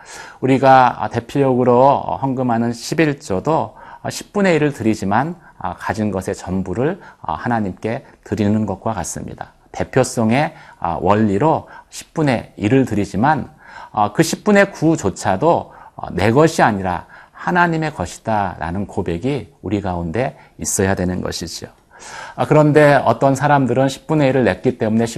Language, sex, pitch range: Korean, male, 100-145 Hz